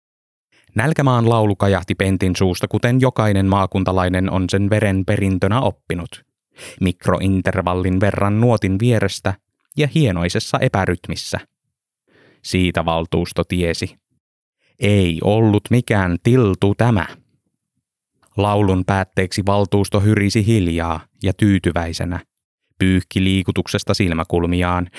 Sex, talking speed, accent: male, 90 wpm, native